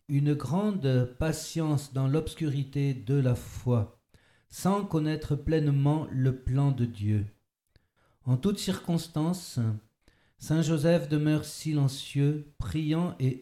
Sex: male